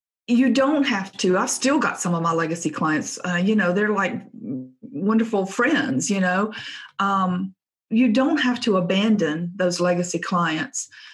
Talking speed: 160 wpm